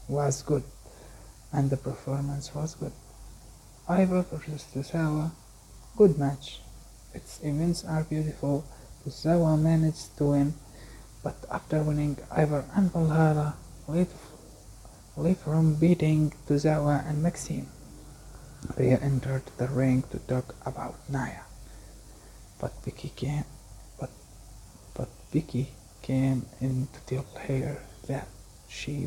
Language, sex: English, male